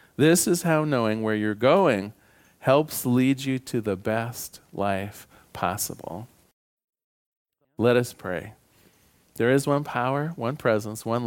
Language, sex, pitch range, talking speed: English, male, 110-150 Hz, 135 wpm